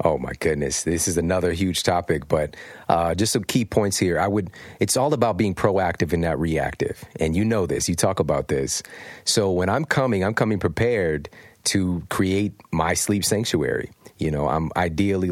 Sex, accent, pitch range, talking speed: male, American, 85-105 Hz, 190 wpm